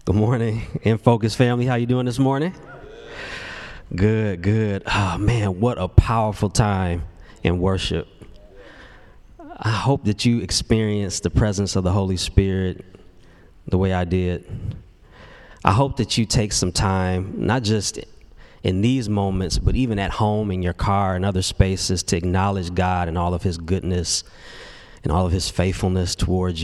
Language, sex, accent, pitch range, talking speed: English, male, American, 90-105 Hz, 160 wpm